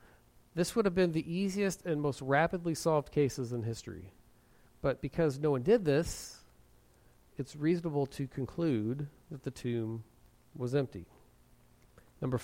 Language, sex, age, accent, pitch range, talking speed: English, male, 40-59, American, 120-160 Hz, 140 wpm